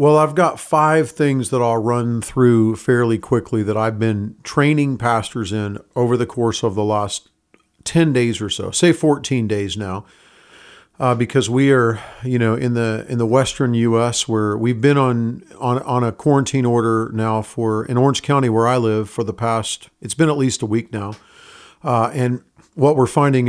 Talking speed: 180 wpm